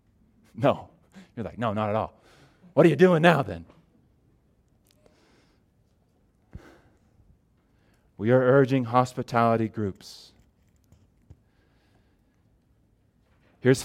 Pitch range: 105-155 Hz